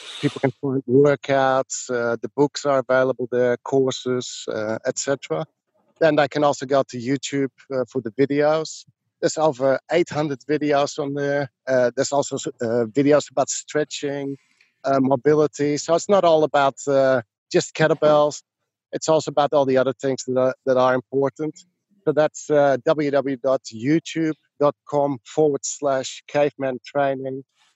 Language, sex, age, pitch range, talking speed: English, male, 50-69, 130-150 Hz, 140 wpm